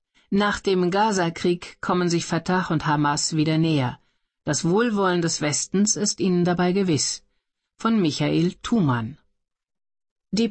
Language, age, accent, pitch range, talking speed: German, 50-69, German, 155-200 Hz, 125 wpm